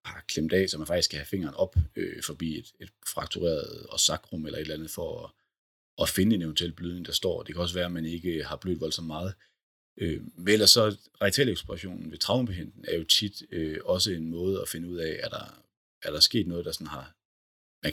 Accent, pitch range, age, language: native, 80-95 Hz, 30-49, Danish